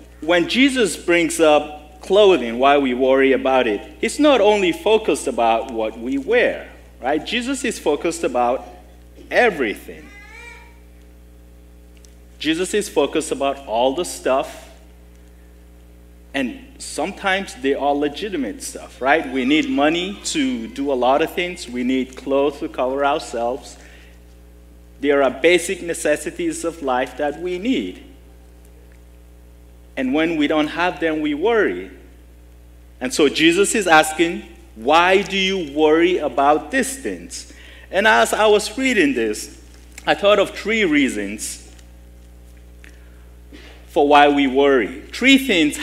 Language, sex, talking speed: English, male, 130 wpm